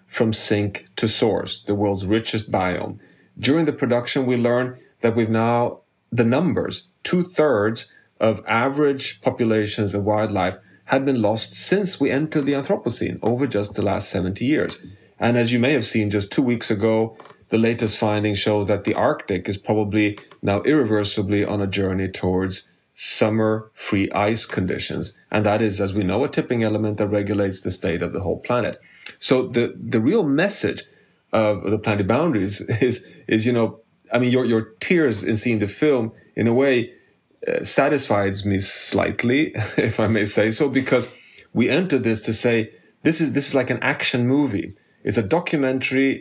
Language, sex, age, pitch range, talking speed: English, male, 30-49, 105-130 Hz, 180 wpm